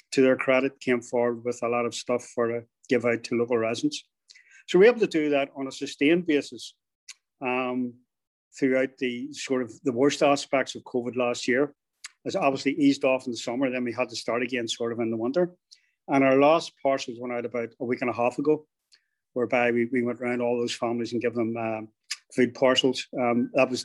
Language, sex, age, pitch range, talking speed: English, male, 40-59, 120-140 Hz, 225 wpm